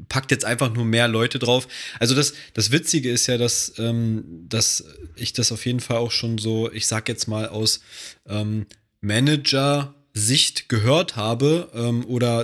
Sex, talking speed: male, 170 wpm